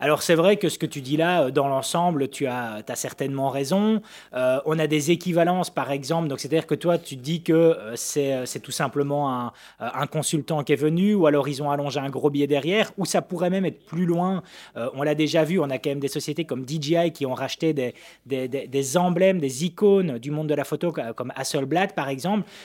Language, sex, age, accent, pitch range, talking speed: French, male, 20-39, French, 140-175 Hz, 230 wpm